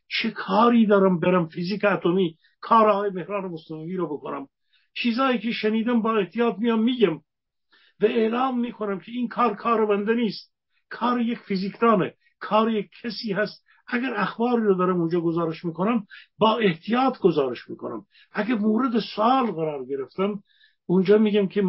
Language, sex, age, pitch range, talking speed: Persian, male, 50-69, 165-225 Hz, 145 wpm